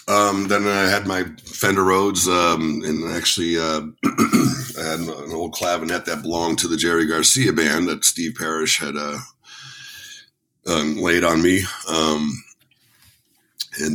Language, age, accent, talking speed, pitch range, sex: English, 50-69, American, 145 wpm, 80-90 Hz, male